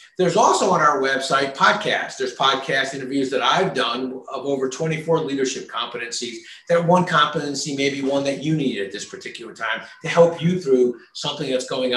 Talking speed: 185 wpm